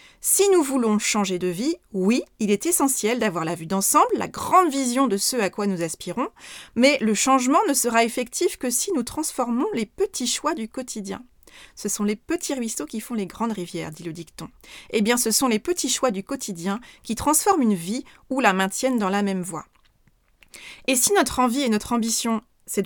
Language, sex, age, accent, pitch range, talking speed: French, female, 30-49, French, 195-270 Hz, 205 wpm